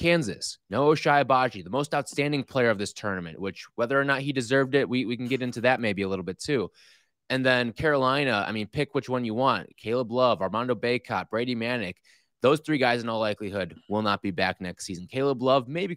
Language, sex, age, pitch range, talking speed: English, male, 20-39, 110-150 Hz, 225 wpm